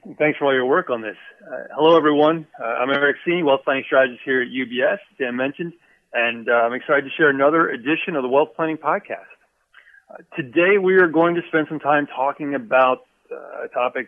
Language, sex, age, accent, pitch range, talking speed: English, male, 40-59, American, 125-160 Hz, 210 wpm